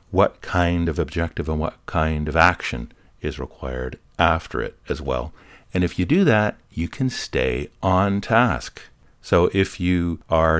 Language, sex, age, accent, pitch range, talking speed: English, male, 50-69, American, 80-105 Hz, 165 wpm